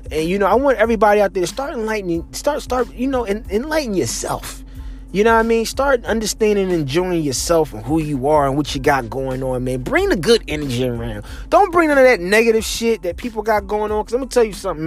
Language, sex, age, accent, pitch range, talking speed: English, male, 20-39, American, 155-230 Hz, 255 wpm